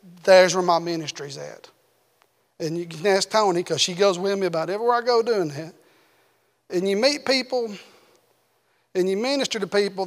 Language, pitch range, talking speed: English, 175-230 Hz, 180 wpm